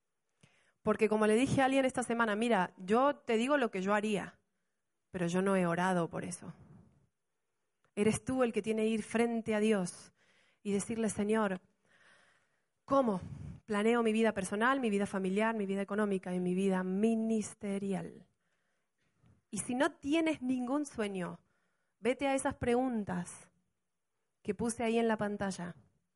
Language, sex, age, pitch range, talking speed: Spanish, female, 30-49, 195-255 Hz, 155 wpm